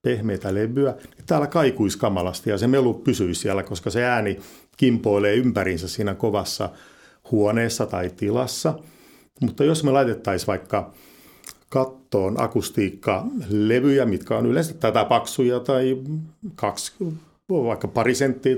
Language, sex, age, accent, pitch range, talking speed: Finnish, male, 50-69, native, 100-130 Hz, 115 wpm